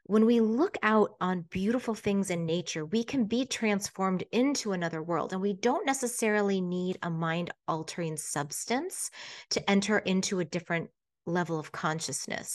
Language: English